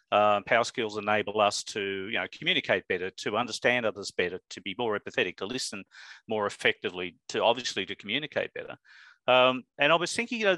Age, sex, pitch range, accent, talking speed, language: 50-69, male, 110-130 Hz, Australian, 195 wpm, English